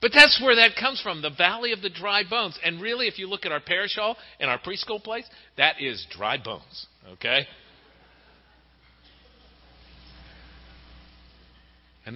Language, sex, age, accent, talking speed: English, male, 50-69, American, 155 wpm